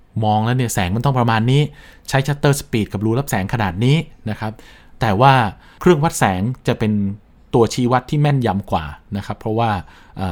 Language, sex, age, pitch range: Thai, male, 20-39, 100-130 Hz